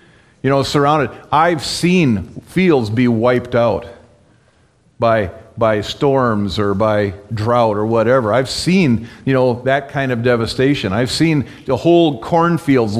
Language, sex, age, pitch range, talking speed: English, male, 40-59, 110-145 Hz, 140 wpm